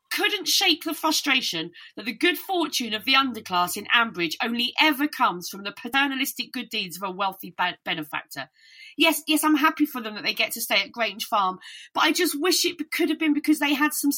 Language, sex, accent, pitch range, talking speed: English, female, British, 210-300 Hz, 215 wpm